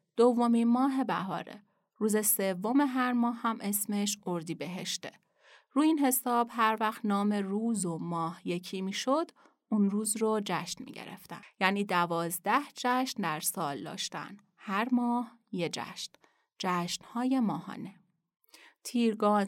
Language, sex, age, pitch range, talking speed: Persian, female, 30-49, 180-235 Hz, 125 wpm